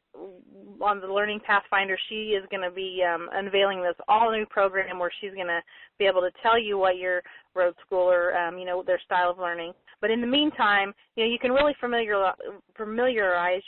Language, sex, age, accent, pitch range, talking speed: English, female, 30-49, American, 180-240 Hz, 195 wpm